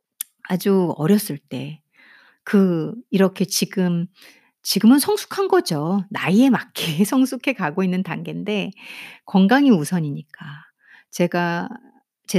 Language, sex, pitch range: Korean, female, 175-265 Hz